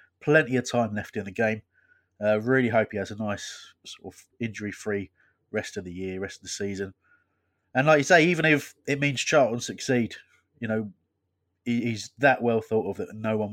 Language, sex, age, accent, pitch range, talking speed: English, male, 30-49, British, 95-125 Hz, 205 wpm